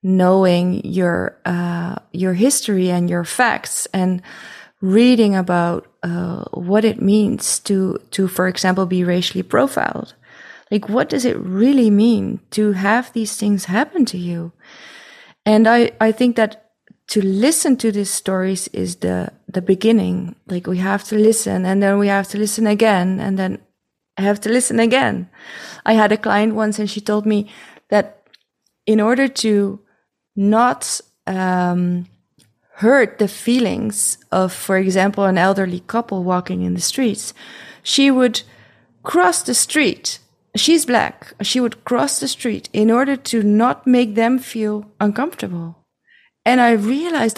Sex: female